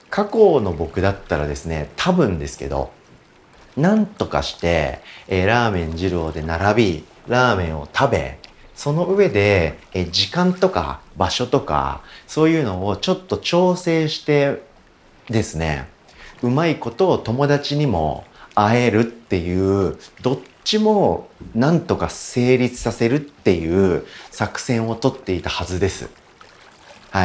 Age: 40-59